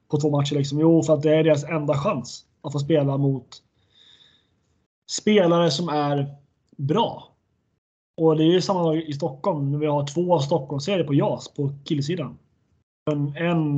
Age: 20-39